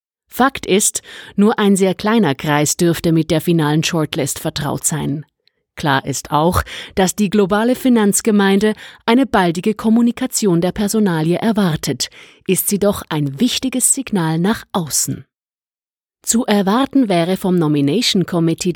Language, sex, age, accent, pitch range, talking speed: German, female, 30-49, German, 160-225 Hz, 130 wpm